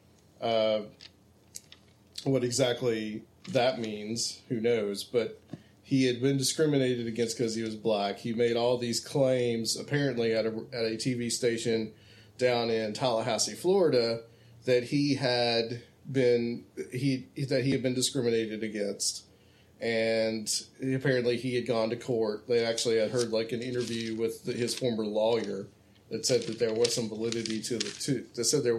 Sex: male